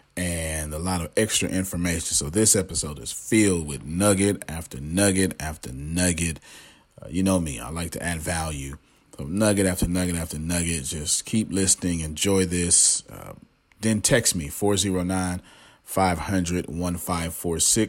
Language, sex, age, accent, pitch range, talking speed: English, male, 40-59, American, 85-100 Hz, 140 wpm